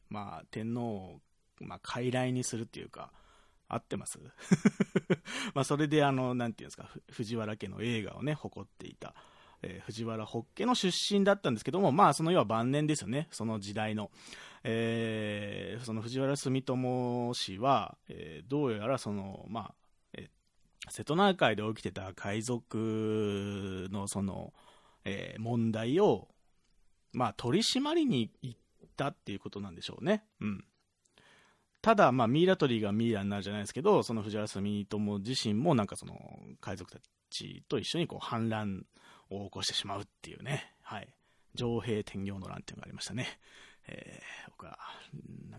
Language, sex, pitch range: Japanese, male, 105-145 Hz